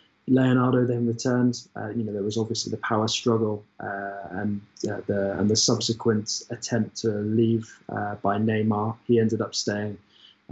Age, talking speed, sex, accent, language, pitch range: 20-39, 170 wpm, male, British, English, 105-120 Hz